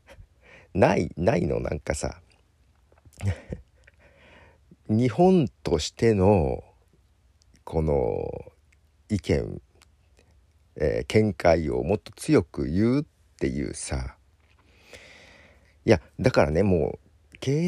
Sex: male